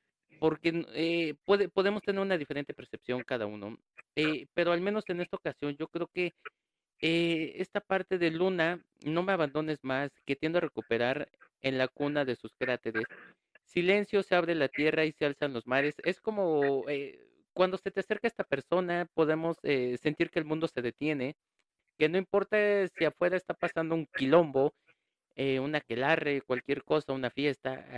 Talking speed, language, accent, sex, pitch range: 175 wpm, Spanish, Mexican, male, 125-170 Hz